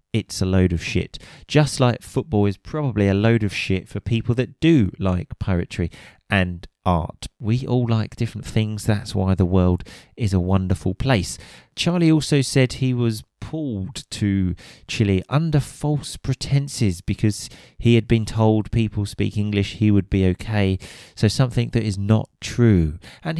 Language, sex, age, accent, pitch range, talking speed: English, male, 30-49, British, 100-130 Hz, 165 wpm